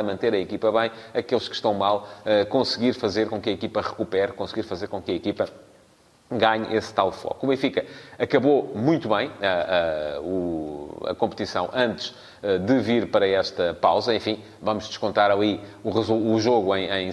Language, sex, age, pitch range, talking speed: Portuguese, male, 30-49, 95-120 Hz, 180 wpm